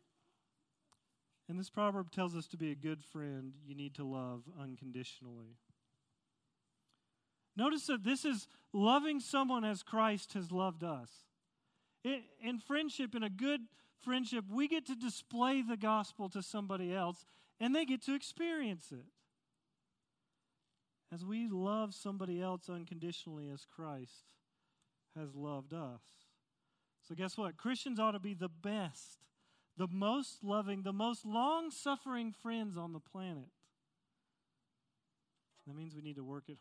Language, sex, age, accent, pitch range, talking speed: English, male, 40-59, American, 155-225 Hz, 140 wpm